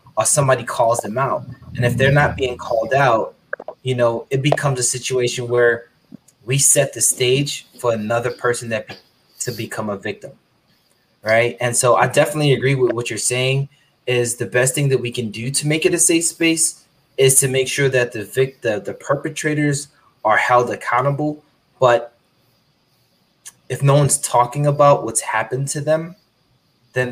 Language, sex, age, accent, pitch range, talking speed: English, male, 20-39, American, 120-140 Hz, 175 wpm